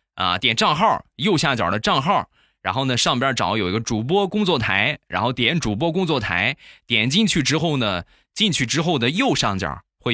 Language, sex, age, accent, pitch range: Chinese, male, 20-39, native, 105-145 Hz